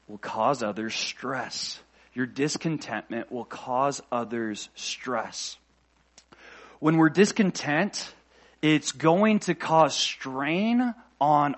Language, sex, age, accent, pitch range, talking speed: English, male, 30-49, American, 155-220 Hz, 100 wpm